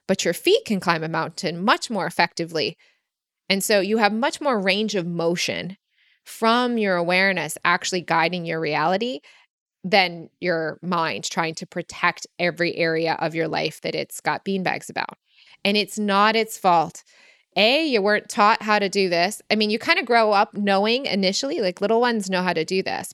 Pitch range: 175-210 Hz